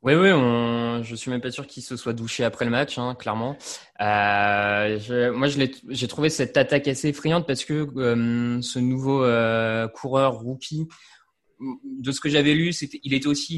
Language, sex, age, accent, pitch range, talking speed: French, male, 20-39, French, 115-140 Hz, 200 wpm